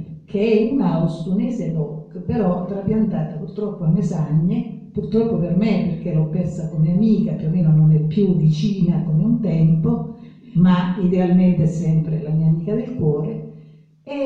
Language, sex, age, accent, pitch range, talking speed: Italian, female, 50-69, native, 160-200 Hz, 160 wpm